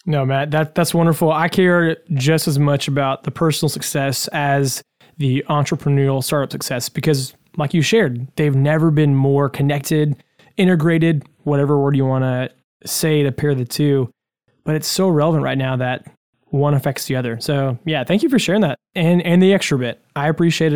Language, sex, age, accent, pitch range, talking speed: English, male, 20-39, American, 135-160 Hz, 180 wpm